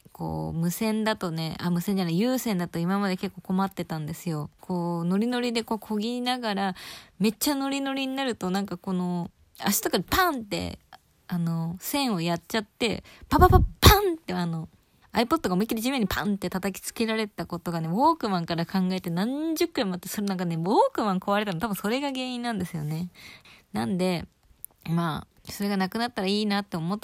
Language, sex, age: Japanese, female, 20-39